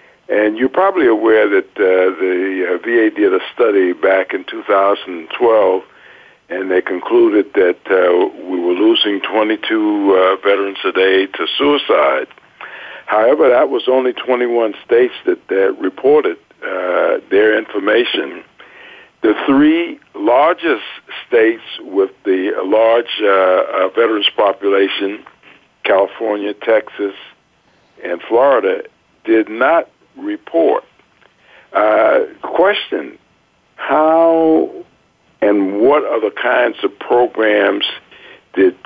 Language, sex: English, male